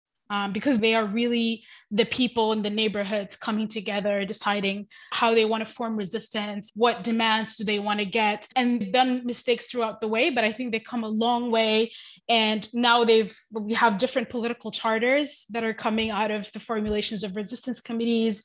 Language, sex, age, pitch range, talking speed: English, female, 20-39, 215-245 Hz, 190 wpm